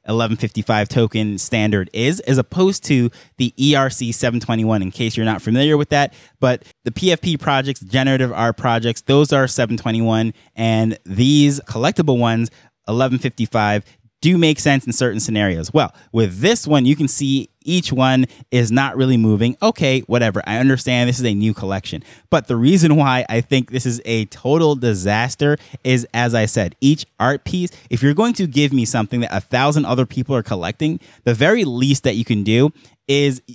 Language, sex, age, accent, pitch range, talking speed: English, male, 20-39, American, 115-145 Hz, 175 wpm